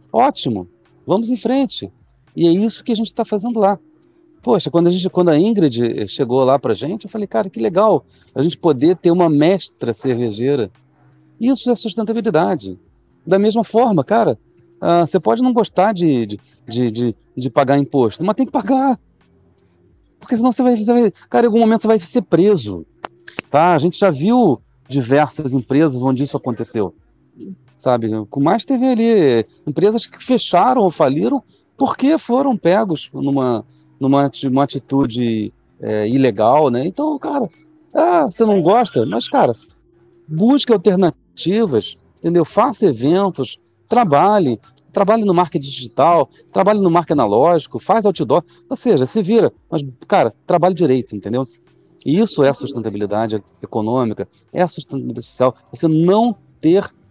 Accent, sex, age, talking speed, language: Brazilian, male, 40-59, 150 wpm, Portuguese